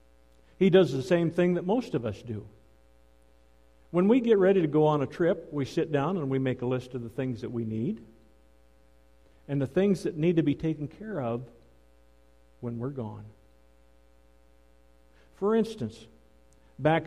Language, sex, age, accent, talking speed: English, male, 50-69, American, 170 wpm